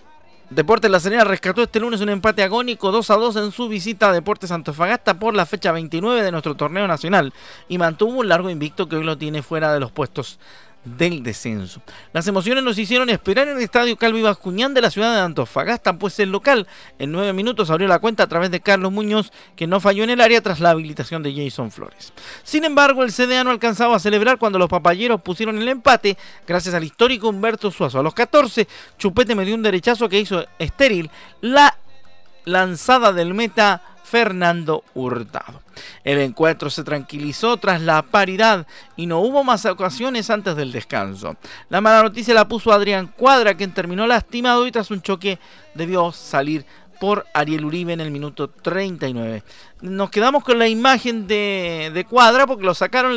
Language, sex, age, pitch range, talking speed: Spanish, male, 40-59, 165-230 Hz, 190 wpm